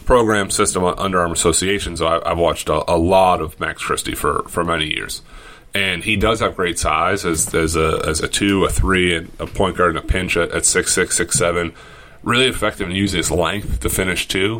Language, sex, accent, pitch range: English, male, American, 85-110 Hz